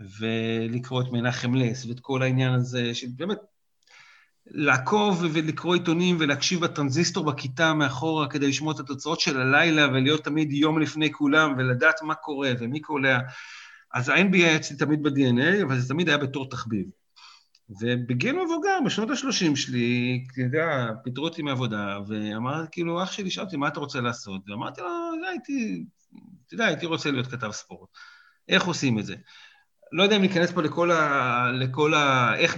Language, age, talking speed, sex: Hebrew, 40-59, 145 wpm, male